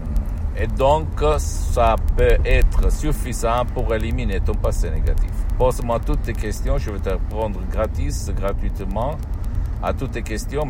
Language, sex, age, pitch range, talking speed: Italian, male, 50-69, 85-110 Hz, 135 wpm